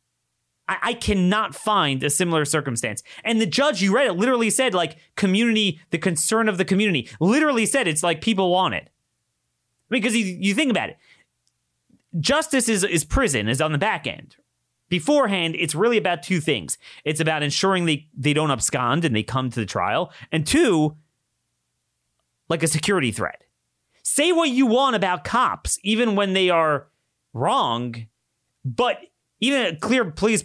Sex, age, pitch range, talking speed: male, 30-49, 140-205 Hz, 170 wpm